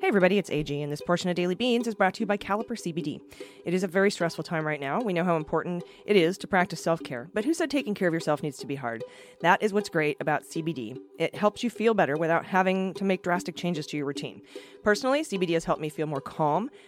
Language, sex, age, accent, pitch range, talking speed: English, female, 30-49, American, 155-205 Hz, 260 wpm